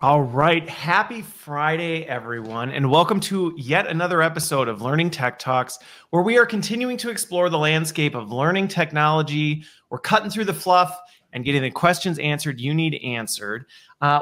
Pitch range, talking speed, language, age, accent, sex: 135-180 Hz, 170 wpm, English, 30-49, American, male